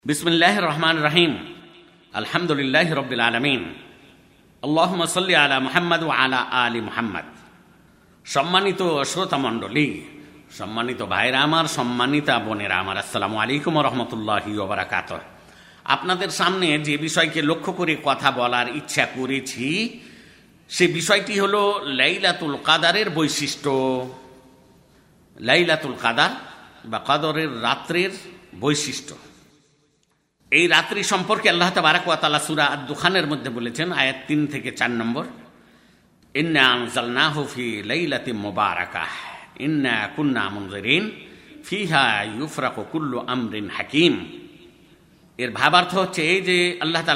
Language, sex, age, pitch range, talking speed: Bengali, male, 50-69, 130-175 Hz, 60 wpm